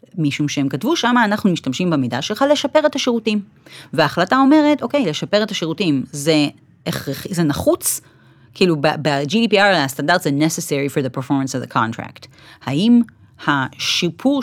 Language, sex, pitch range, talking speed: Hebrew, female, 150-240 Hz, 140 wpm